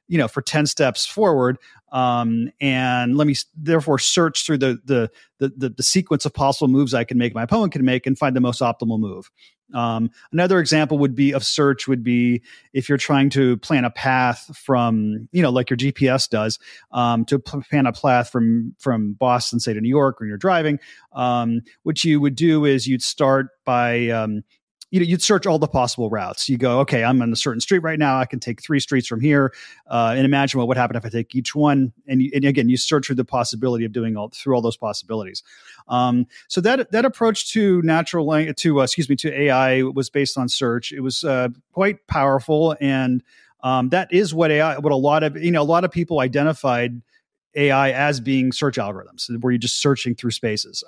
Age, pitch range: 30-49, 120-150 Hz